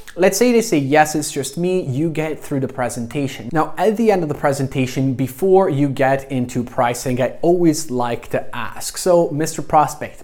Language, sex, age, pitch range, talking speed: English, male, 20-39, 125-160 Hz, 195 wpm